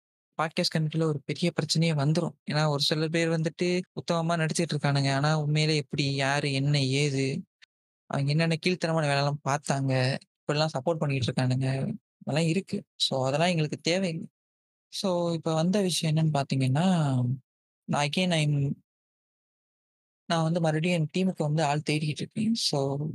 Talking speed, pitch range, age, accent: 135 wpm, 145-175 Hz, 20-39, native